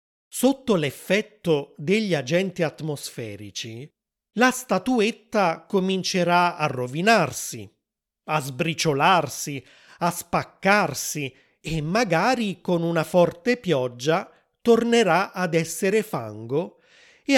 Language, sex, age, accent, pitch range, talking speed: Italian, male, 30-49, native, 145-205 Hz, 85 wpm